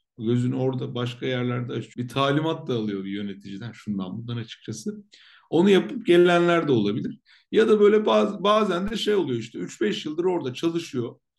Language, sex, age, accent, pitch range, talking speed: Turkish, male, 50-69, native, 120-165 Hz, 165 wpm